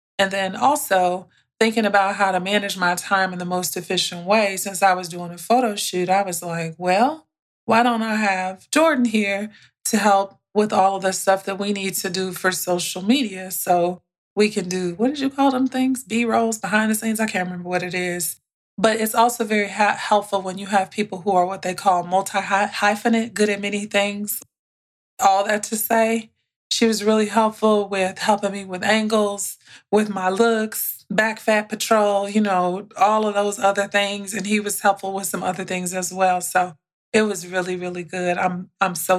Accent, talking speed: American, 200 wpm